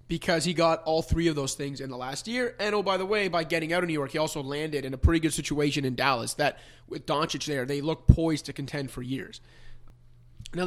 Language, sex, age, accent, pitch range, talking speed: English, male, 30-49, American, 135-170 Hz, 255 wpm